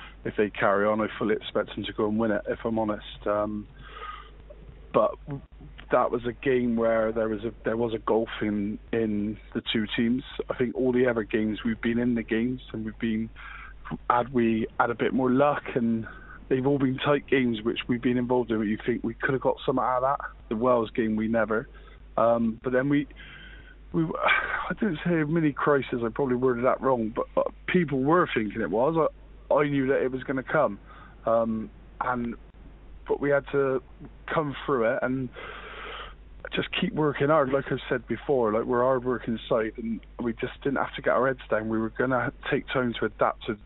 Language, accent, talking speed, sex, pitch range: English, British, 220 wpm, male, 110-130 Hz